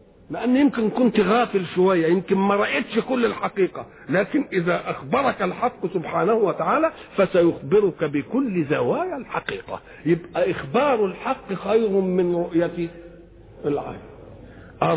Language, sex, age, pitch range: Japanese, male, 50-69, 170-230 Hz